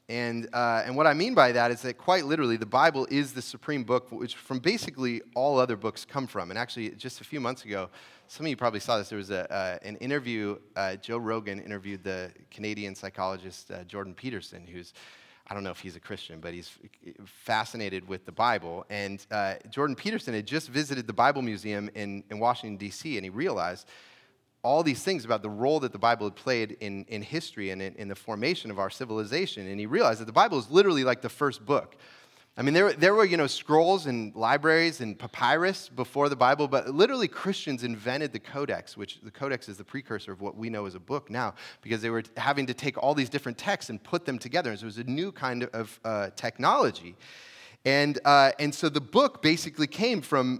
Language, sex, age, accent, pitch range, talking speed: English, male, 30-49, American, 105-140 Hz, 225 wpm